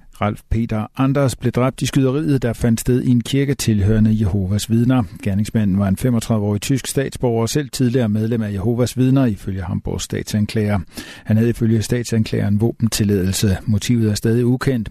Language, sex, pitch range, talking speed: Danish, male, 105-130 Hz, 165 wpm